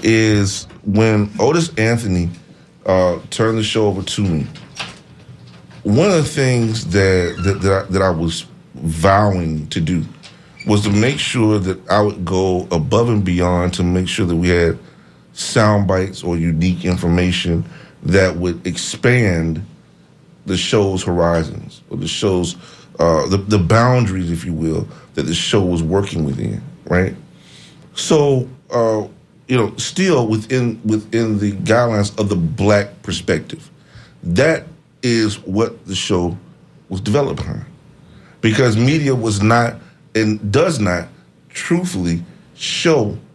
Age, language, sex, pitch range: 40-59, English, male, 90-115 Hz